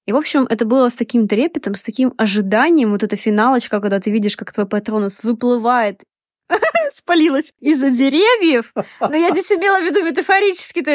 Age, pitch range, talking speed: 20-39, 235-330 Hz, 170 wpm